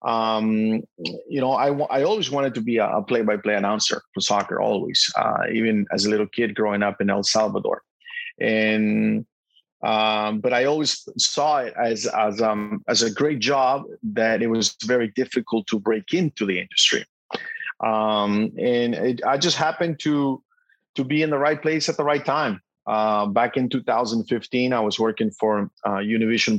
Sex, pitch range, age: male, 110-135 Hz, 30-49